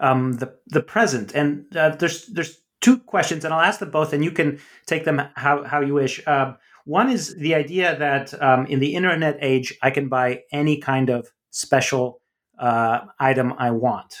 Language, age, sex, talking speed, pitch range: English, 30-49, male, 190 wpm, 130-150 Hz